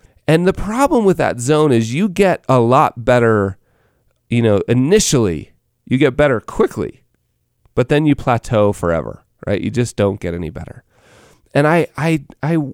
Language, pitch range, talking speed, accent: English, 105-145 Hz, 165 wpm, American